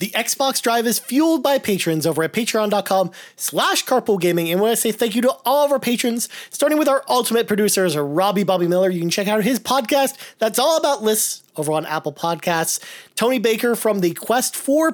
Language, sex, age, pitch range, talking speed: English, male, 30-49, 170-235 Hz, 205 wpm